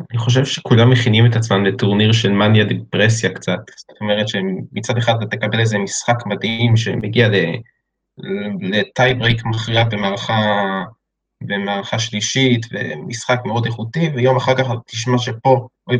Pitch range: 105-125 Hz